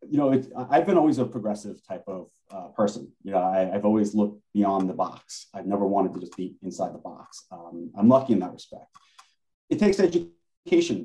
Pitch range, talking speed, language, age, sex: 100-130 Hz, 210 wpm, English, 30-49, male